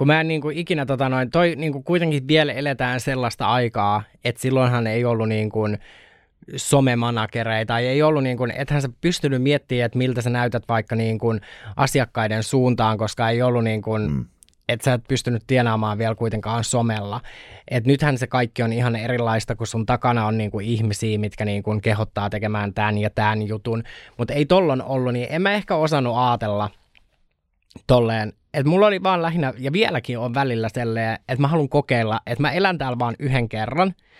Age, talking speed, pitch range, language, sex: 20-39, 180 wpm, 115-135 Hz, Finnish, male